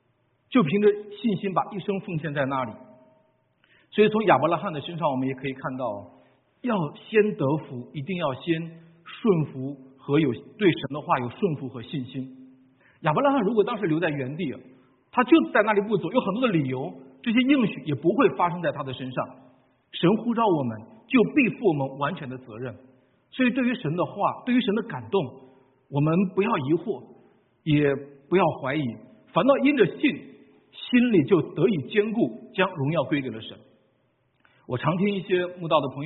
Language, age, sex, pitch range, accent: Chinese, 50-69, male, 135-210 Hz, native